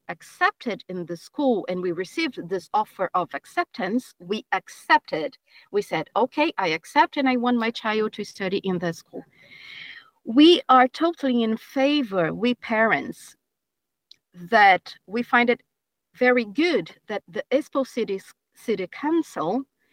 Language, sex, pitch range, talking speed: Finnish, female, 195-270 Hz, 140 wpm